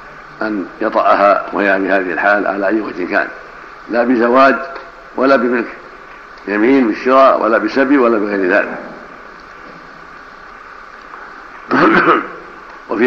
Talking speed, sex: 90 wpm, male